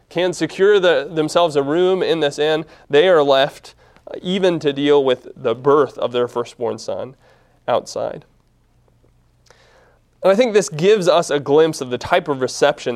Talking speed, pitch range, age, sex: 160 wpm, 130-175 Hz, 30-49, male